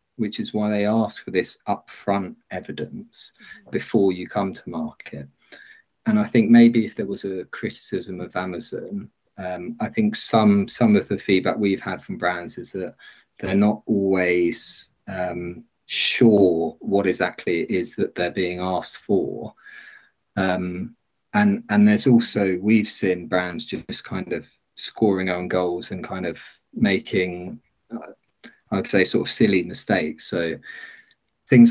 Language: English